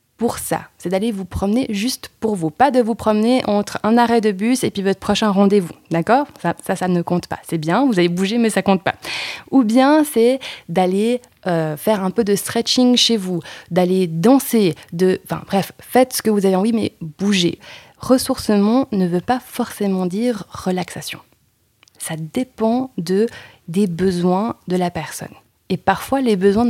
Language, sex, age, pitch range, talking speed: French, female, 20-39, 175-230 Hz, 190 wpm